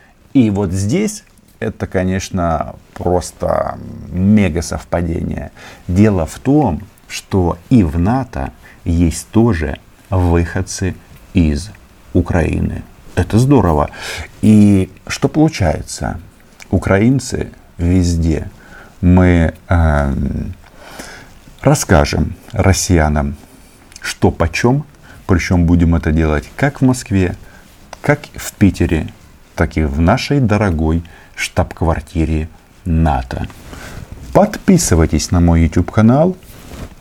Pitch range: 85-110 Hz